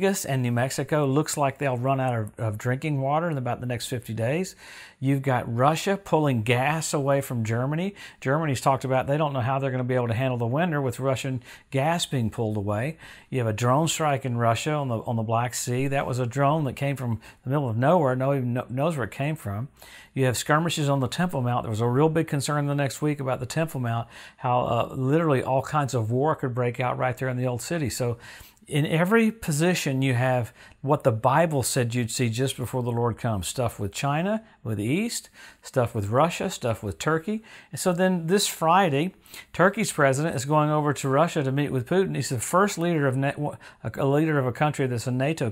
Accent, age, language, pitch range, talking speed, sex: American, 50-69, English, 125-155 Hz, 225 wpm, male